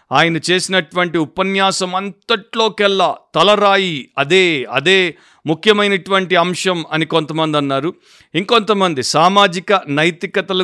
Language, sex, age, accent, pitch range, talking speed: Telugu, male, 50-69, native, 155-190 Hz, 85 wpm